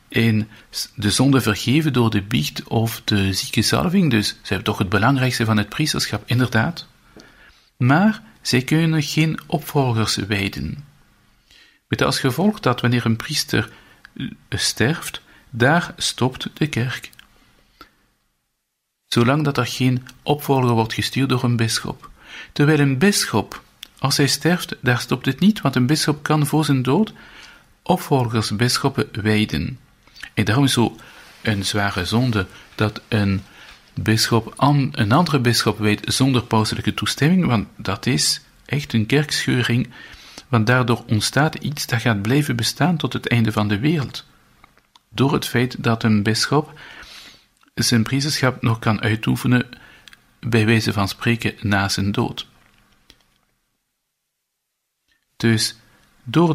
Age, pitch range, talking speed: 50-69, 110-145 Hz, 135 wpm